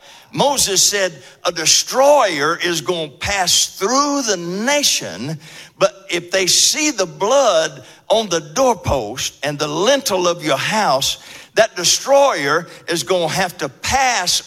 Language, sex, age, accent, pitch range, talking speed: English, male, 60-79, American, 175-265 Hz, 140 wpm